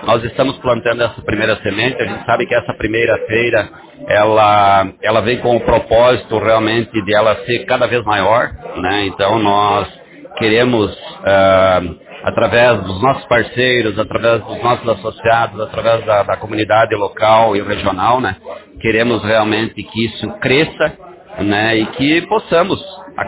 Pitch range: 100-120 Hz